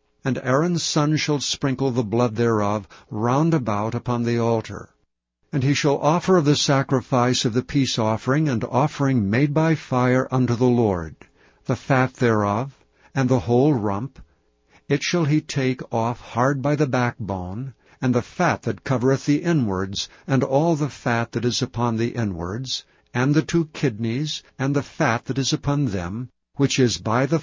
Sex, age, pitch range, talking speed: male, 60-79, 115-145 Hz, 175 wpm